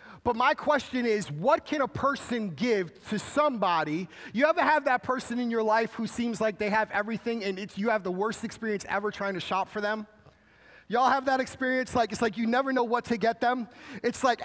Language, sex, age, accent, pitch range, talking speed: English, male, 30-49, American, 200-250 Hz, 225 wpm